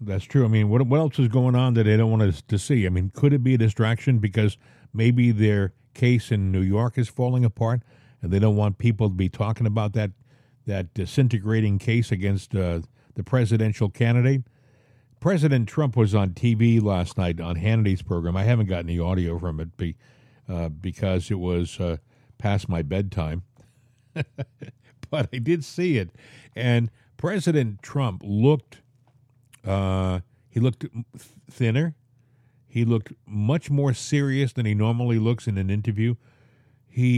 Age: 50-69